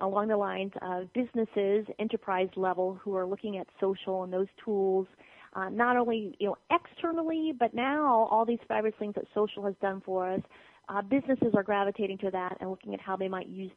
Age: 30-49